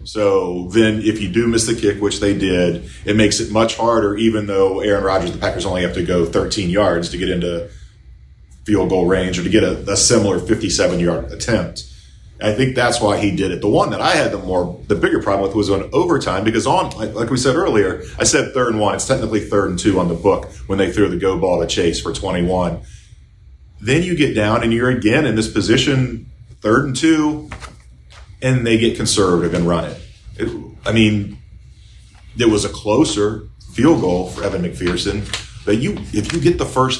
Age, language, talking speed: 40-59, English, 210 wpm